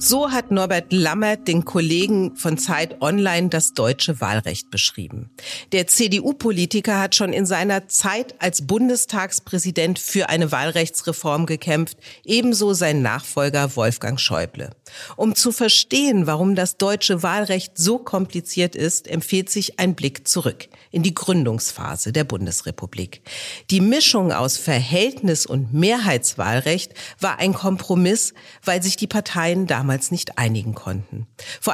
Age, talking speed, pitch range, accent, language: 50-69, 130 wpm, 140-195 Hz, German, German